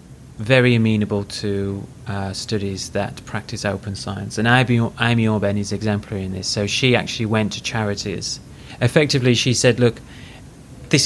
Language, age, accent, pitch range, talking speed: English, 30-49, British, 100-125 Hz, 145 wpm